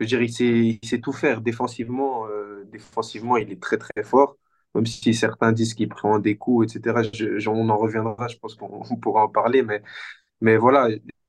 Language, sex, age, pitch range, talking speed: French, male, 20-39, 105-120 Hz, 215 wpm